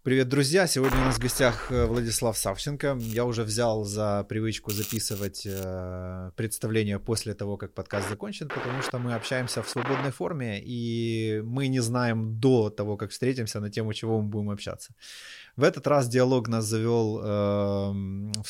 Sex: male